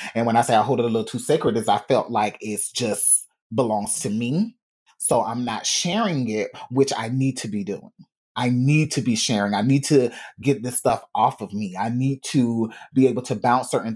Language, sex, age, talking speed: English, male, 30-49, 230 wpm